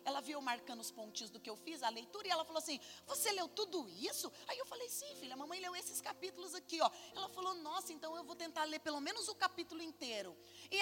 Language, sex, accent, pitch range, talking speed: Portuguese, female, Brazilian, 255-365 Hz, 250 wpm